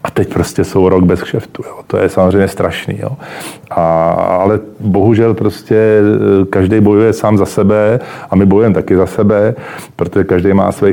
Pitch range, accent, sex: 95-105 Hz, native, male